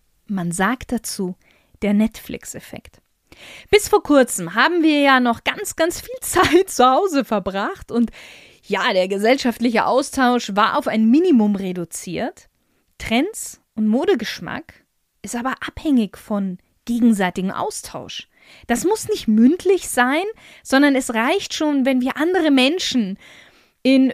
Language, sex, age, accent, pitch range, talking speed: German, female, 20-39, German, 215-325 Hz, 130 wpm